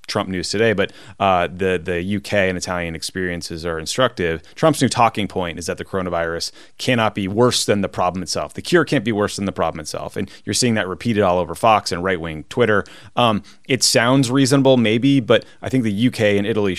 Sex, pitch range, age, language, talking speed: male, 95-130 Hz, 30-49, English, 220 wpm